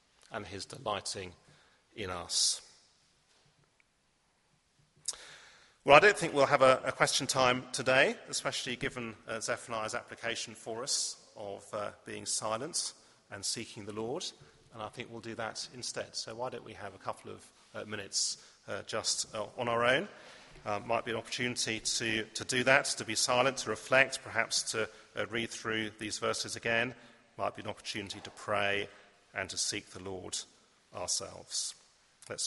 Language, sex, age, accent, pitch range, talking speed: English, male, 40-59, British, 100-120 Hz, 165 wpm